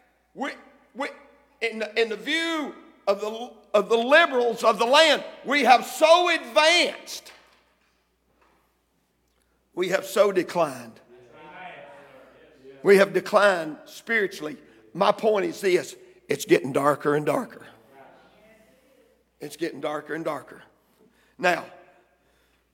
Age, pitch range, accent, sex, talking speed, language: 50-69, 165-245 Hz, American, male, 110 wpm, English